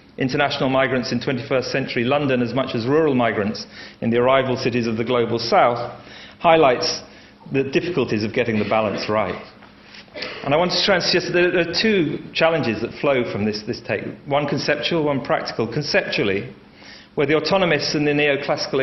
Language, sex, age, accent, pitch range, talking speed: English, male, 40-59, British, 120-150 Hz, 180 wpm